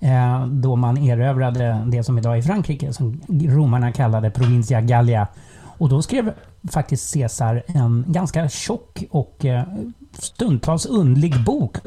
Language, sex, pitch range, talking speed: English, male, 125-165 Hz, 125 wpm